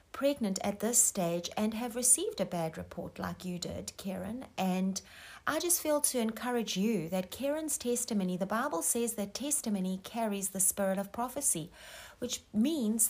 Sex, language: female, English